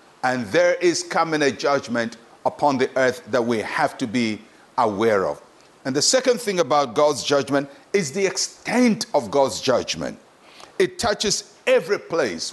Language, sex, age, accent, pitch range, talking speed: English, male, 50-69, Nigerian, 135-200 Hz, 160 wpm